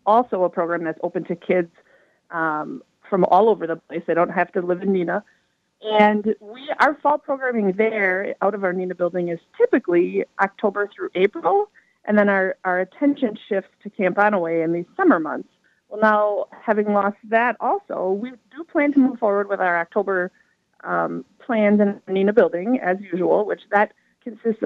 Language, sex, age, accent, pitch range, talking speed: English, female, 30-49, American, 185-235 Hz, 185 wpm